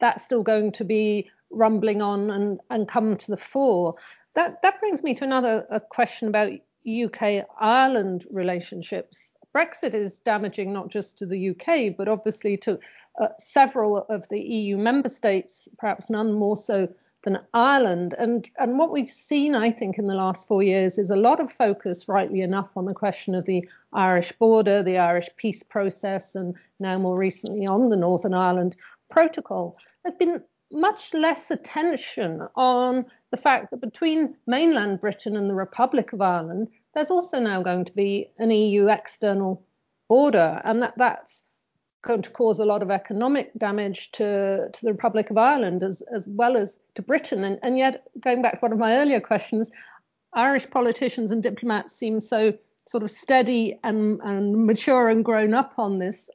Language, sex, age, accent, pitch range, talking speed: English, female, 50-69, British, 200-245 Hz, 175 wpm